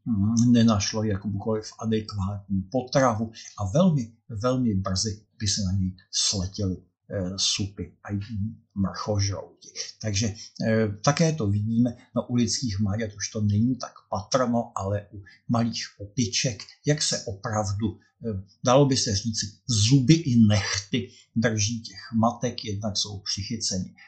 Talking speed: 130 wpm